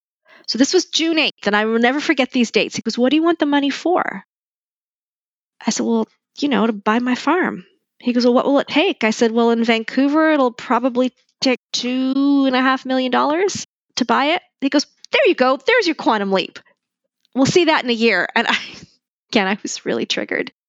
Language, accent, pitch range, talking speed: English, American, 195-260 Hz, 220 wpm